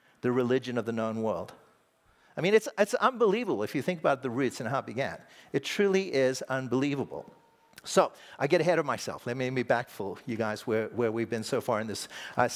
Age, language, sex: 50-69, English, male